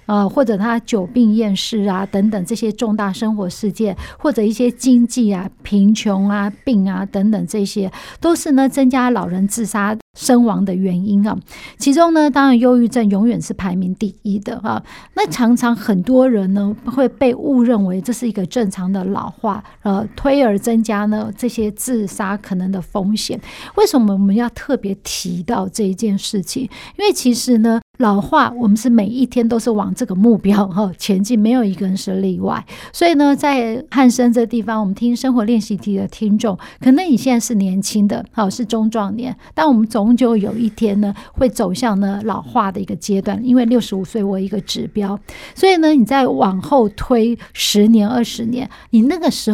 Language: Chinese